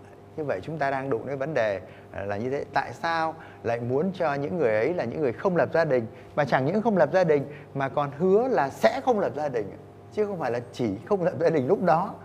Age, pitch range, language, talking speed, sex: 20-39, 105-145 Hz, Vietnamese, 265 wpm, male